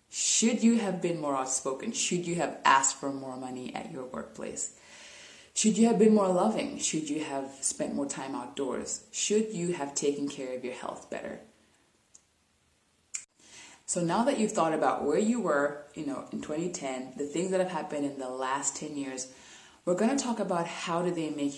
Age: 20-39